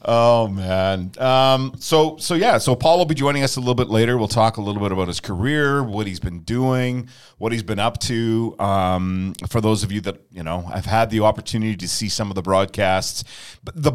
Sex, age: male, 40-59